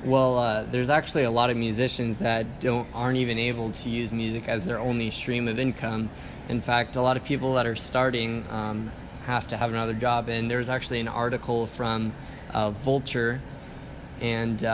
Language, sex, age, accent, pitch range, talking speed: English, male, 20-39, American, 115-125 Hz, 190 wpm